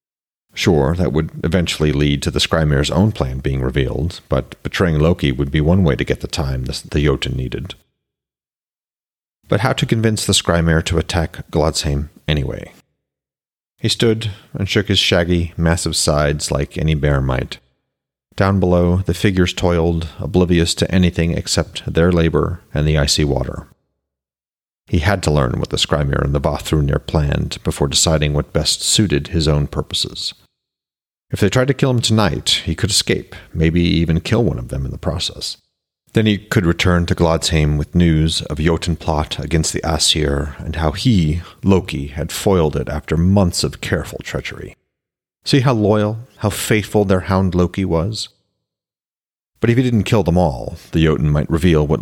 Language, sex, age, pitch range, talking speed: English, male, 40-59, 75-100 Hz, 170 wpm